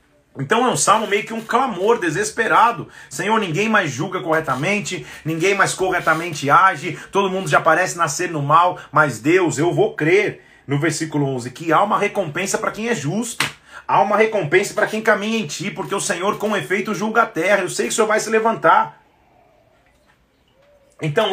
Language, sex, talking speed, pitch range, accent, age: Portuguese, male, 185 wpm, 150-205 Hz, Brazilian, 40-59